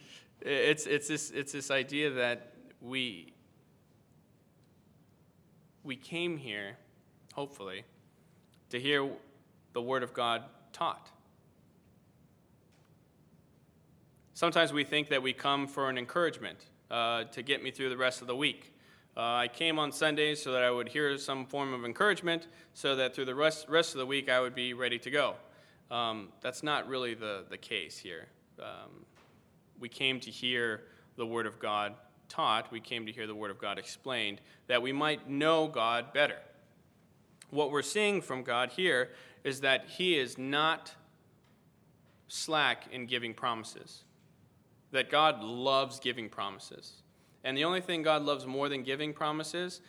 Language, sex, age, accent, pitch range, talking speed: English, male, 20-39, American, 125-155 Hz, 155 wpm